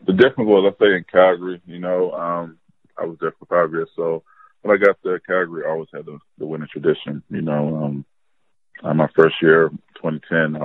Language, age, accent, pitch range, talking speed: English, 20-39, American, 75-85 Hz, 210 wpm